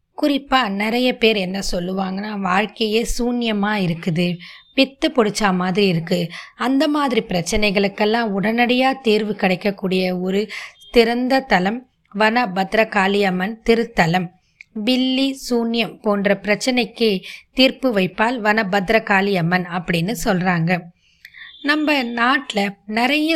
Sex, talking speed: female, 95 wpm